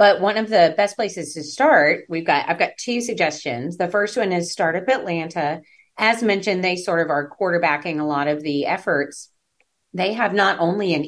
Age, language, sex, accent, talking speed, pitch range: 30-49, English, female, American, 200 wpm, 150-195 Hz